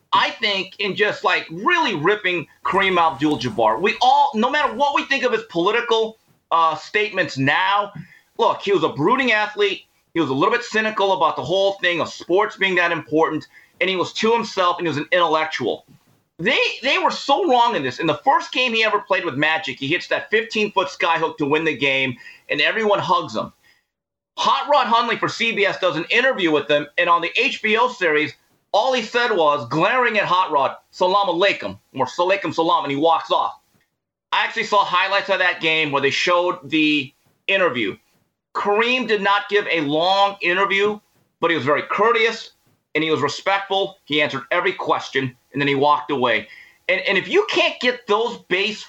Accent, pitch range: American, 160-225 Hz